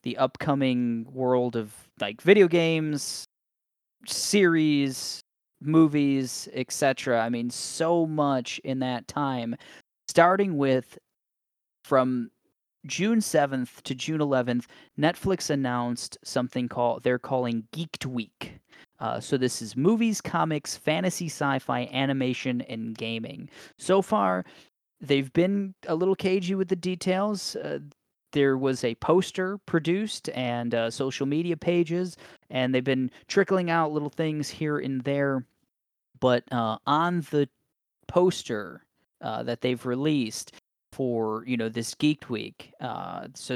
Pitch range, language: 120-165 Hz, English